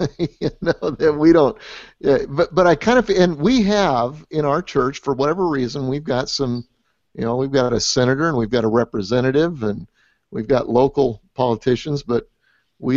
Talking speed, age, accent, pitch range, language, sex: 180 wpm, 50-69, American, 120-155 Hz, English, male